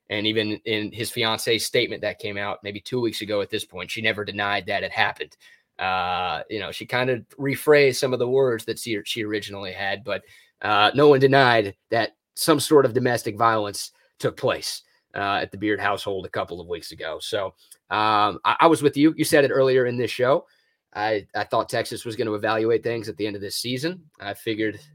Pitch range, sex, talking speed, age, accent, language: 105-130 Hz, male, 225 wpm, 30-49, American, English